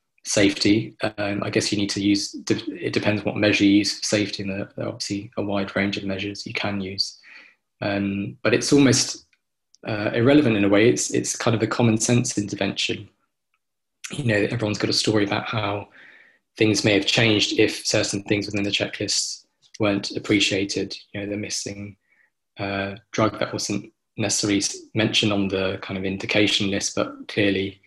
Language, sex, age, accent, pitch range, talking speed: English, male, 20-39, British, 100-105 Hz, 180 wpm